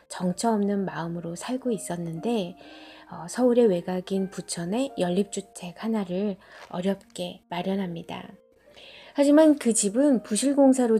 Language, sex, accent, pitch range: Korean, female, native, 185-235 Hz